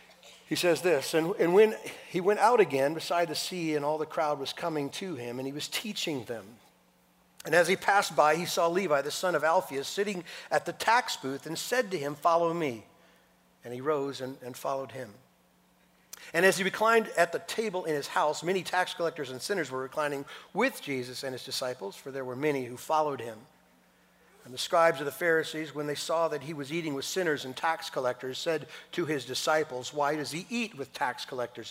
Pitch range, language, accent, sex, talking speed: 130-170 Hz, English, American, male, 215 wpm